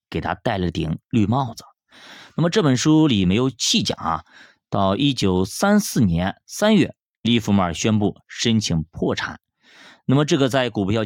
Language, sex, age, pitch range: Chinese, male, 30-49, 95-135 Hz